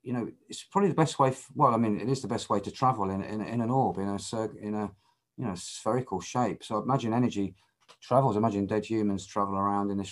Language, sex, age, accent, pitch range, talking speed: English, male, 40-59, British, 100-130 Hz, 255 wpm